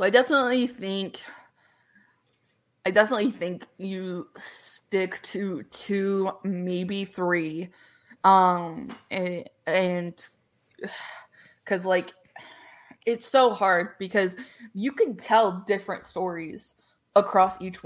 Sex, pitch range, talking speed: female, 185-210 Hz, 95 wpm